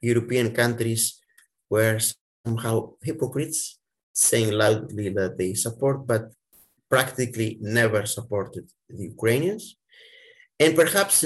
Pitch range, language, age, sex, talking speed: 115-145 Hz, English, 50-69, male, 95 wpm